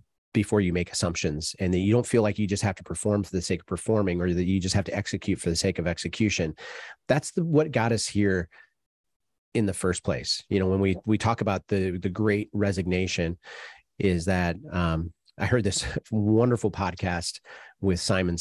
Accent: American